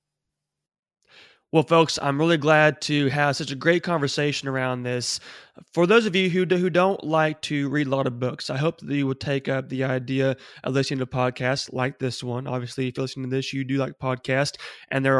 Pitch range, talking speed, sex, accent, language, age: 130-150 Hz, 215 wpm, male, American, English, 20-39